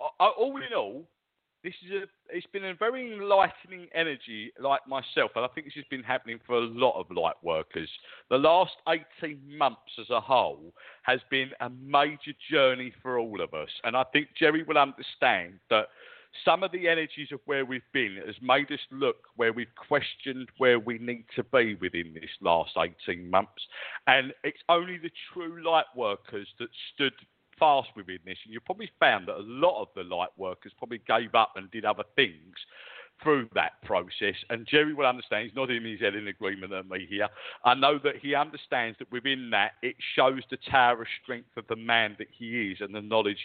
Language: English